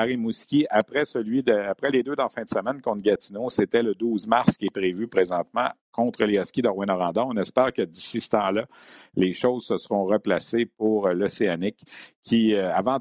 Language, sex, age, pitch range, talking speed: French, male, 50-69, 100-125 Hz, 180 wpm